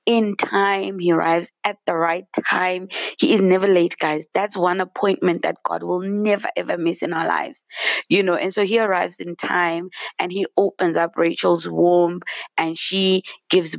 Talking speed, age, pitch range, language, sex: 185 wpm, 20-39, 160-195 Hz, English, female